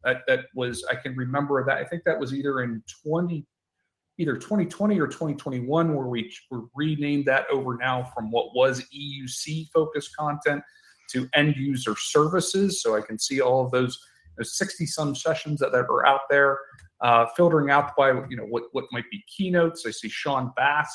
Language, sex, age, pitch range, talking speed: English, male, 40-59, 125-170 Hz, 200 wpm